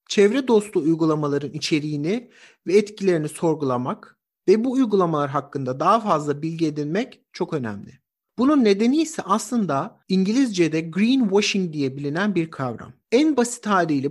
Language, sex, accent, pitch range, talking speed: Turkish, male, native, 155-220 Hz, 130 wpm